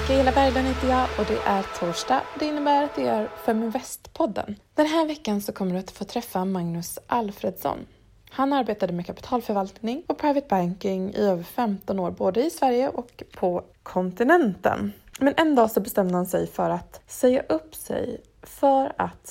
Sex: female